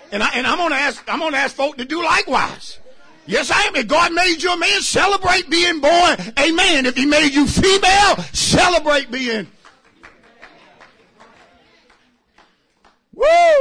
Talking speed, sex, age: 150 wpm, male, 40-59